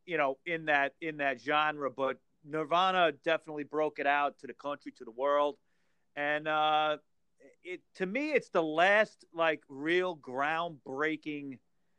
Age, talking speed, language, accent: 40-59, 150 wpm, English, American